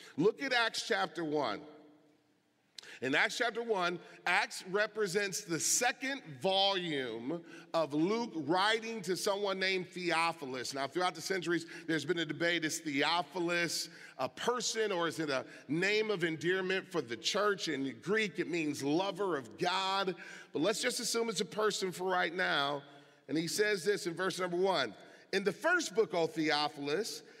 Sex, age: male, 40-59